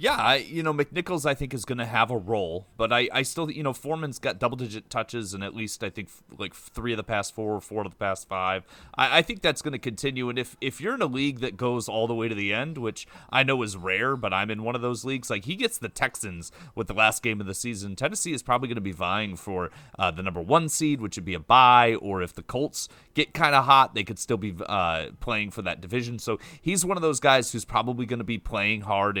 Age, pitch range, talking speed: 30-49, 105-135 Hz, 275 wpm